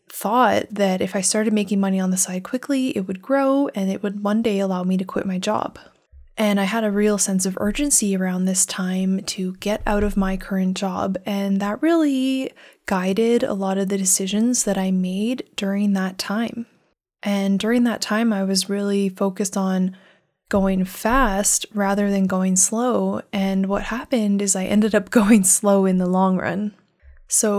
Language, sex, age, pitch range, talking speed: English, female, 20-39, 190-215 Hz, 190 wpm